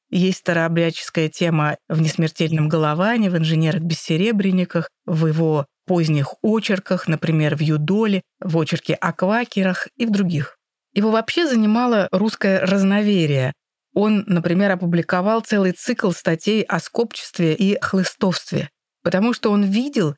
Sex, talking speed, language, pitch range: female, 125 wpm, Russian, 170-225 Hz